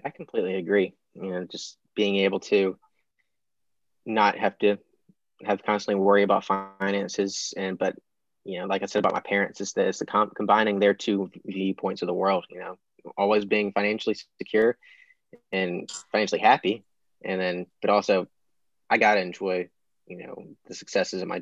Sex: male